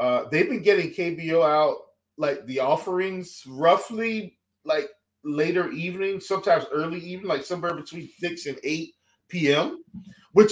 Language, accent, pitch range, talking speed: English, American, 140-195 Hz, 135 wpm